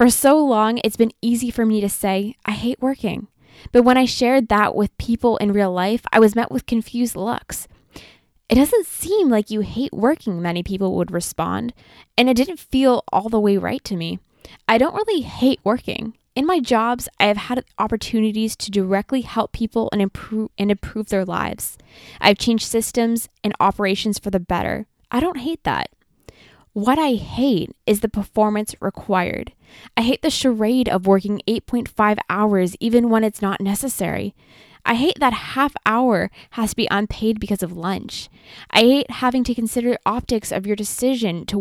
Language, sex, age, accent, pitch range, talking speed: English, female, 10-29, American, 205-245 Hz, 180 wpm